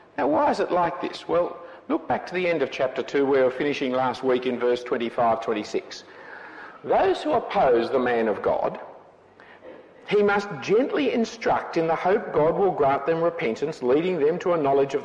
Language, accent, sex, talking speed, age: English, Australian, male, 195 wpm, 50-69